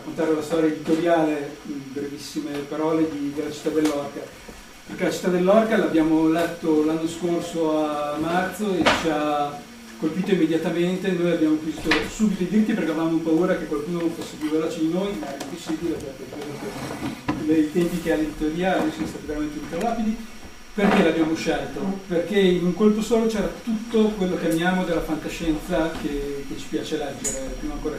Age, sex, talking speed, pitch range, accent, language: 40-59, male, 170 wpm, 155-185 Hz, native, Italian